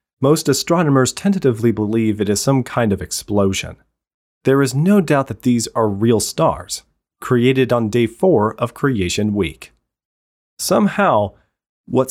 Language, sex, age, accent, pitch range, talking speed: English, male, 30-49, American, 110-150 Hz, 140 wpm